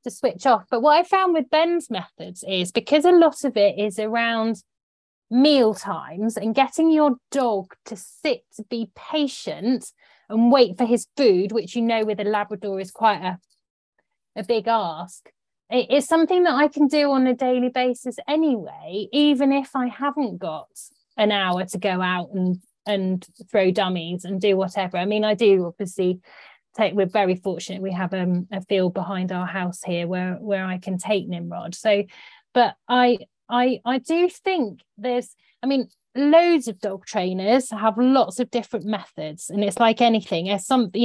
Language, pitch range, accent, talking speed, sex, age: English, 195-250 Hz, British, 180 wpm, female, 30-49